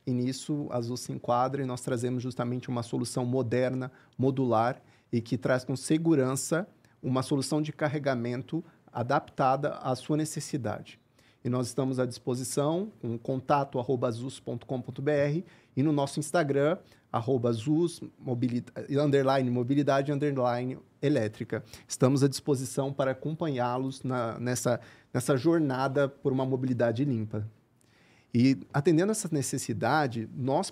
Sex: male